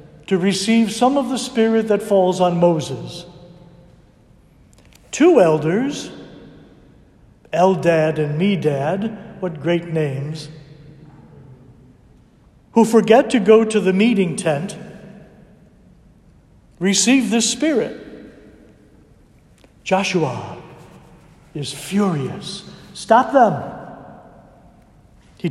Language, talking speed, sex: English, 80 wpm, male